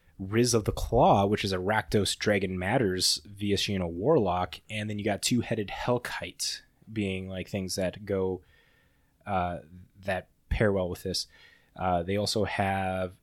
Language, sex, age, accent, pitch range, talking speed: English, male, 20-39, American, 95-115 Hz, 150 wpm